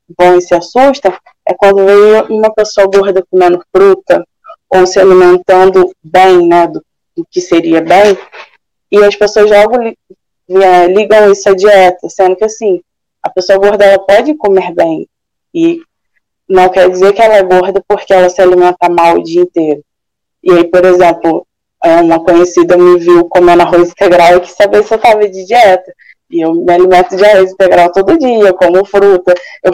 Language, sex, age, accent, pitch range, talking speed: Portuguese, female, 20-39, Brazilian, 180-220 Hz, 175 wpm